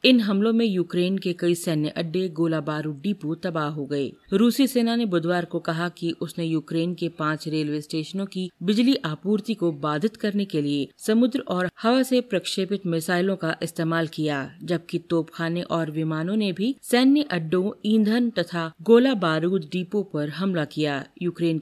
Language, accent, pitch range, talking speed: Hindi, native, 165-205 Hz, 170 wpm